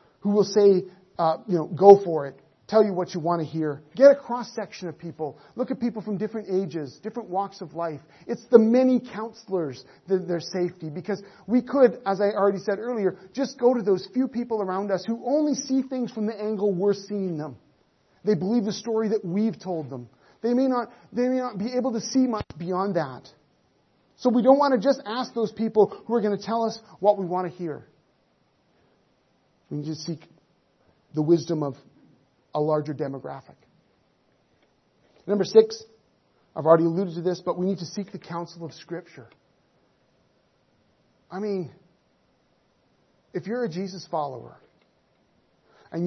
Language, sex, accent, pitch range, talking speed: English, male, American, 165-220 Hz, 180 wpm